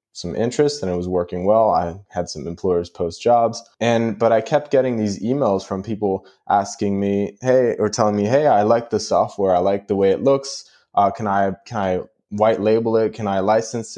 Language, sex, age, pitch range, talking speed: English, male, 20-39, 100-115 Hz, 215 wpm